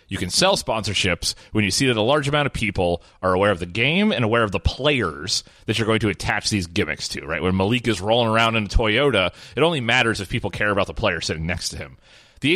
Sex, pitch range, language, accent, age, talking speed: male, 105-160 Hz, English, American, 30-49, 260 wpm